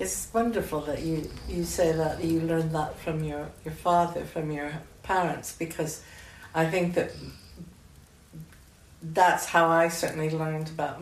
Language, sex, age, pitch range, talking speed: English, female, 60-79, 145-165 Hz, 150 wpm